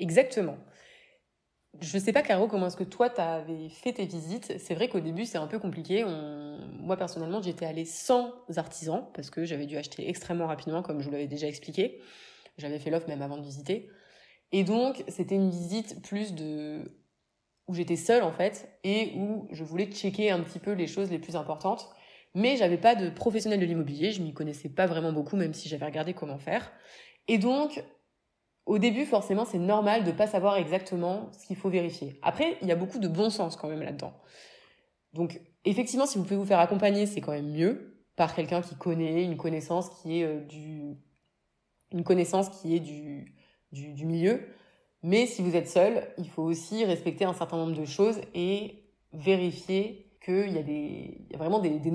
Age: 20-39